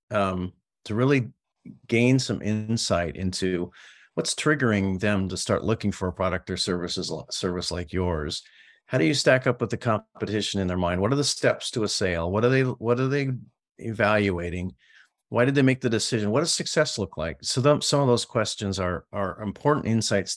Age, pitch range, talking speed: 50-69, 95-120 Hz, 195 wpm